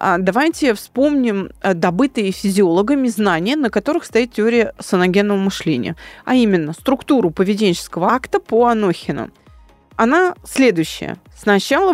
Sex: female